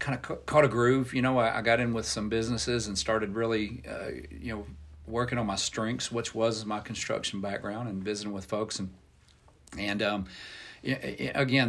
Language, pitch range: English, 95-115 Hz